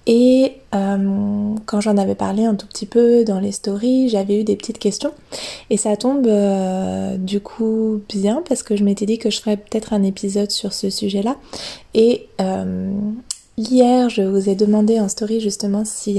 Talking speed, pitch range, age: 185 wpm, 200-225 Hz, 20-39